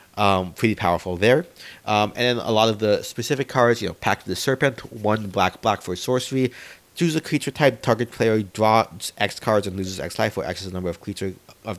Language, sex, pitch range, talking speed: English, male, 100-125 Hz, 225 wpm